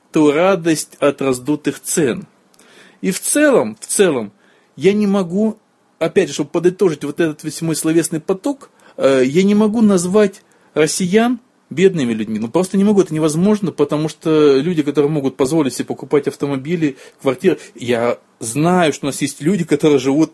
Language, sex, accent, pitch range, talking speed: Russian, male, native, 140-190 Hz, 165 wpm